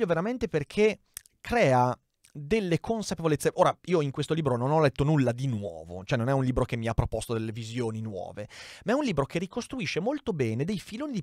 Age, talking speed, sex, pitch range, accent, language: 30-49, 210 wpm, male, 120-190 Hz, native, Italian